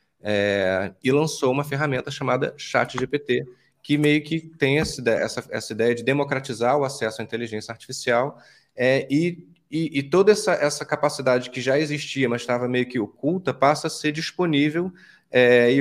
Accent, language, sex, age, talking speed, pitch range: Brazilian, Portuguese, male, 20-39, 170 wpm, 120-155 Hz